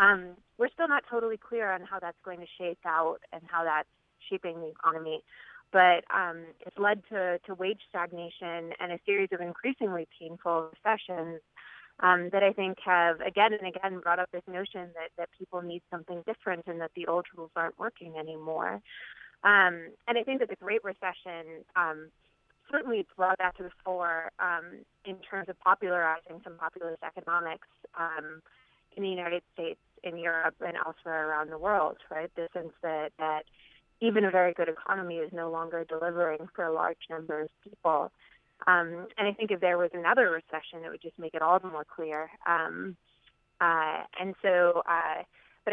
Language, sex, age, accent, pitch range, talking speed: English, female, 20-39, American, 165-185 Hz, 180 wpm